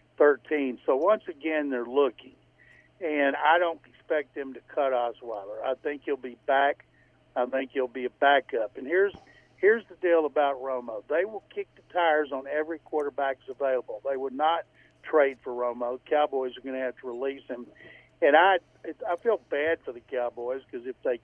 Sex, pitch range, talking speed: male, 125-150 Hz, 185 wpm